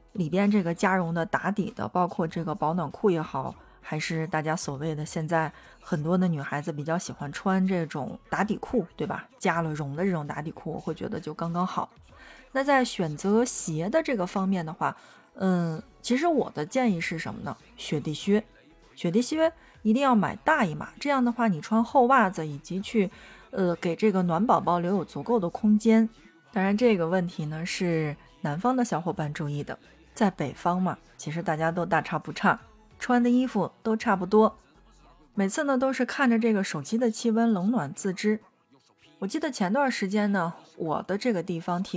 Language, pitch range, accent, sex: Chinese, 165-220 Hz, native, female